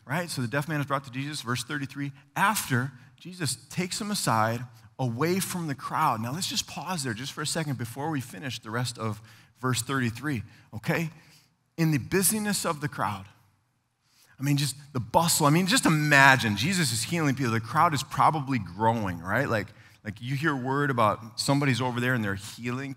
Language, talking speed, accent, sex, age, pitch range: English, 195 wpm, American, male, 30-49, 110-145 Hz